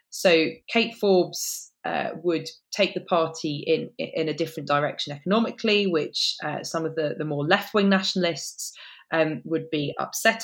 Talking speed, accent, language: 160 wpm, British, English